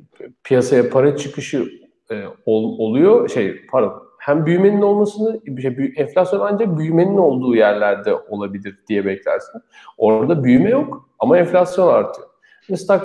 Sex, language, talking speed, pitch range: male, Turkish, 115 wpm, 115-180 Hz